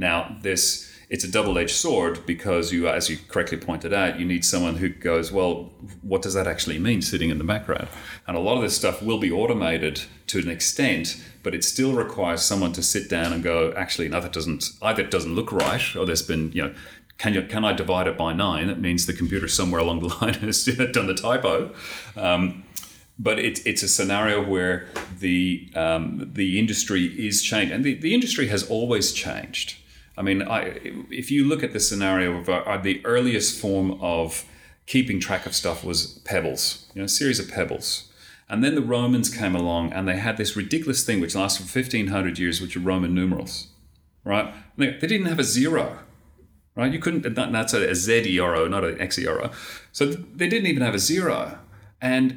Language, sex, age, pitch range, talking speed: English, male, 30-49, 85-115 Hz, 200 wpm